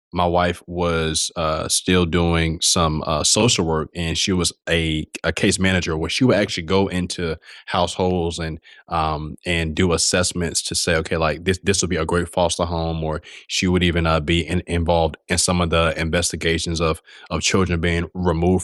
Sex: male